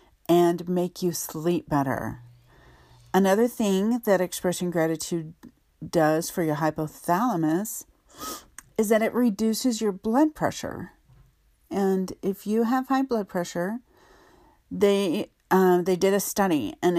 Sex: female